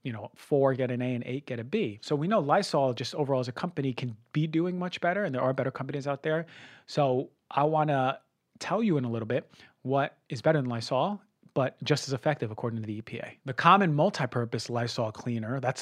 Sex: male